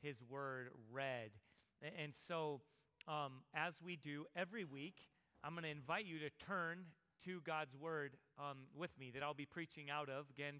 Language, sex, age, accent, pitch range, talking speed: English, male, 40-59, American, 150-185 Hz, 175 wpm